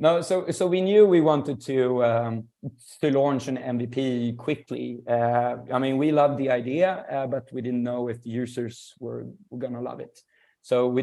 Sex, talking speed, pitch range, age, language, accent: male, 195 wpm, 120-140 Hz, 30-49, English, Swedish